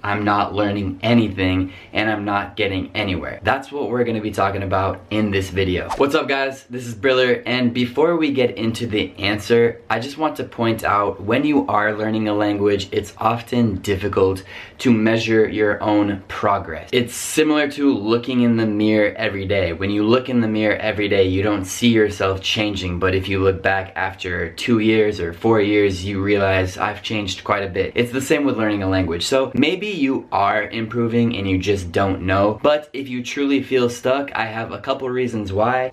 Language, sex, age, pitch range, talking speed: Italian, male, 20-39, 100-120 Hz, 205 wpm